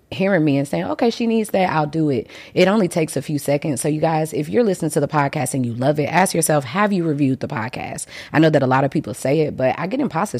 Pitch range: 140-175 Hz